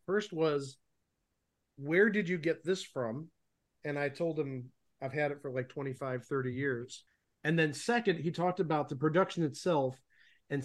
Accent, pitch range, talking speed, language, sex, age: American, 125-160 Hz, 170 wpm, English, male, 40-59